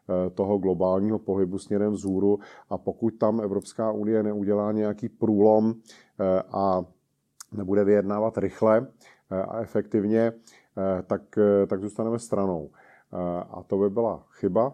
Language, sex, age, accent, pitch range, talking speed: Czech, male, 40-59, native, 95-110 Hz, 115 wpm